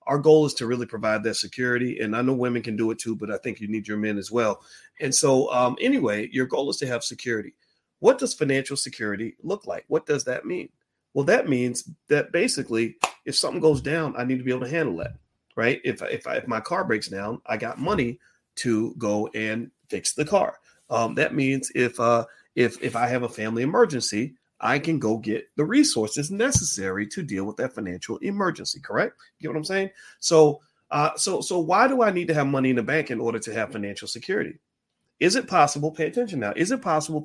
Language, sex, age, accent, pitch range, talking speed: English, male, 40-59, American, 110-150 Hz, 225 wpm